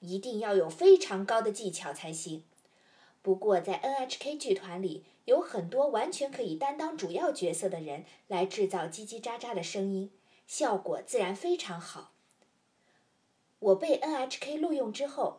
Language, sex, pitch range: Chinese, female, 190-280 Hz